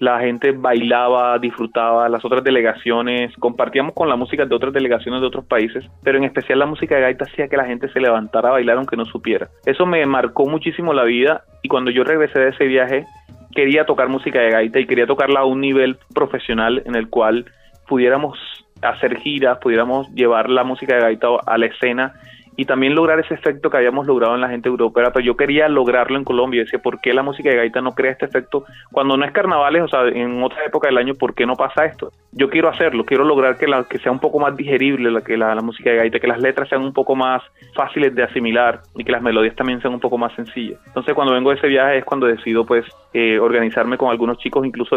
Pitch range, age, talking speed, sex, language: 120-135 Hz, 30-49, 235 wpm, male, Spanish